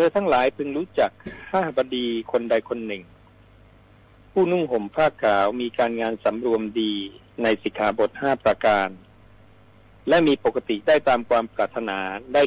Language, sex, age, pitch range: Thai, male, 60-79, 105-135 Hz